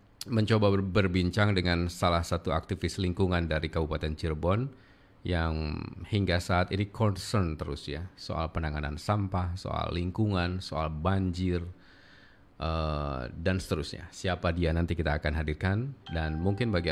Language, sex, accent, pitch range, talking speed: Indonesian, male, native, 85-105 Hz, 125 wpm